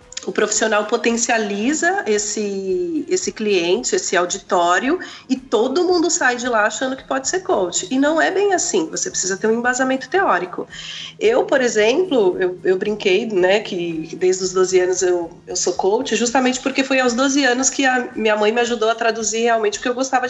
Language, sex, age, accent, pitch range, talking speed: Portuguese, female, 30-49, Brazilian, 210-285 Hz, 190 wpm